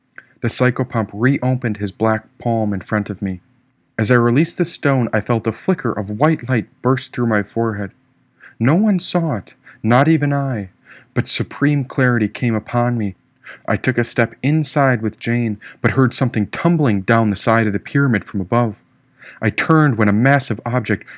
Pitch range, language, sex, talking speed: 110-130 Hz, English, male, 180 wpm